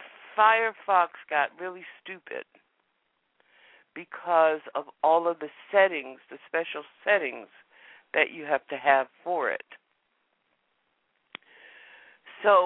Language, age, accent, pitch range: English, 60-79, American, 145-205 Hz